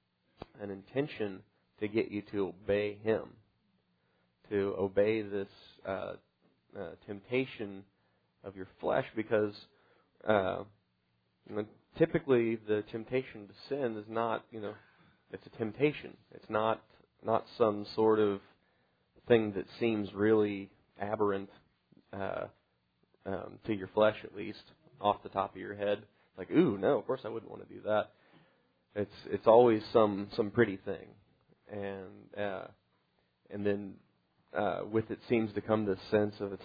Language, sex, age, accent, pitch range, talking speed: English, male, 30-49, American, 100-110 Hz, 145 wpm